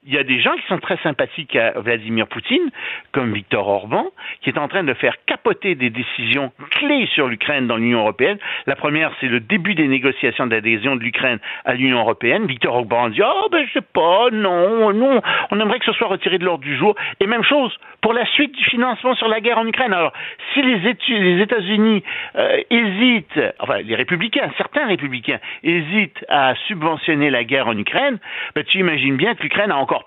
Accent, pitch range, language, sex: French, 145-225 Hz, French, male